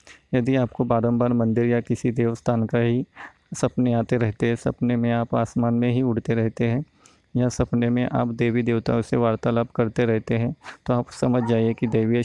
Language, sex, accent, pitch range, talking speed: Hindi, male, native, 115-125 Hz, 190 wpm